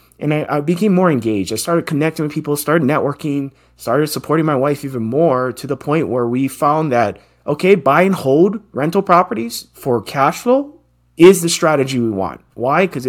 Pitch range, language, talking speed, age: 115-160 Hz, English, 190 wpm, 30-49